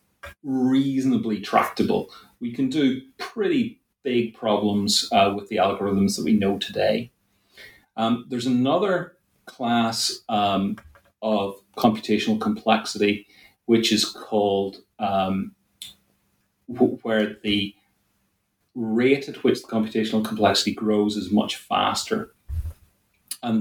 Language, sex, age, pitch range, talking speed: English, male, 30-49, 100-120 Hz, 105 wpm